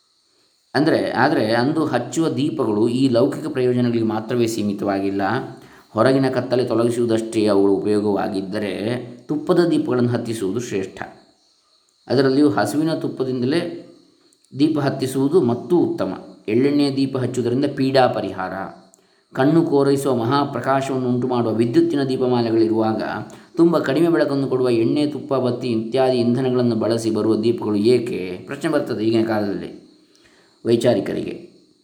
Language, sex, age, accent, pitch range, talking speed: Kannada, male, 20-39, native, 110-140 Hz, 105 wpm